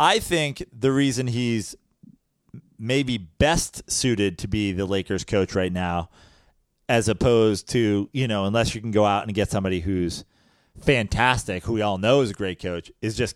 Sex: male